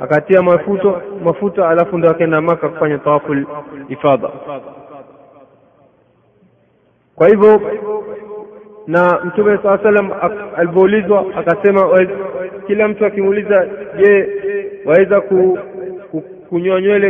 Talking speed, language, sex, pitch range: 80 wpm, Swahili, male, 170-200 Hz